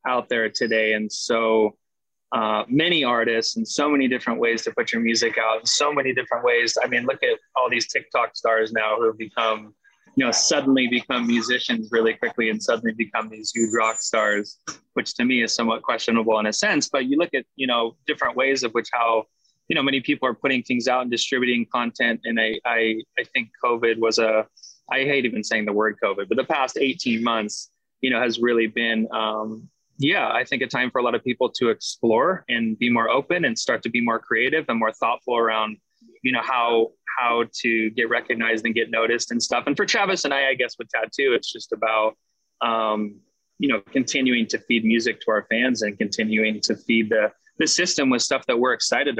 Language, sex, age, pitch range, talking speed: English, male, 20-39, 110-130 Hz, 215 wpm